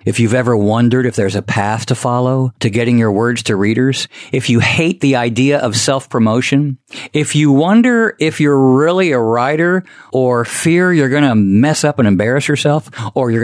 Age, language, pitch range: 50-69, English, 115-170 Hz